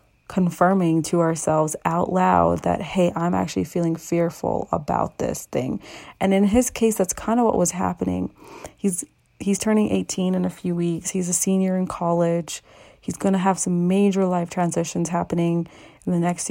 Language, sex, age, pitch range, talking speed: English, female, 30-49, 170-195 Hz, 180 wpm